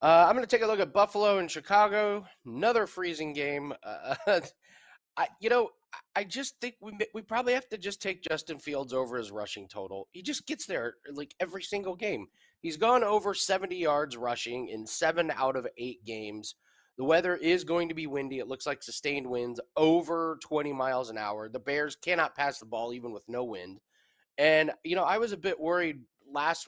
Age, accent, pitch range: 30-49, American, 125-180 Hz